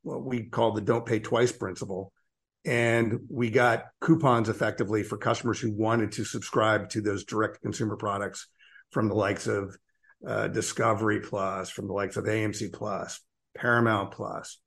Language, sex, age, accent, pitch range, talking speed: English, male, 50-69, American, 105-125 Hz, 160 wpm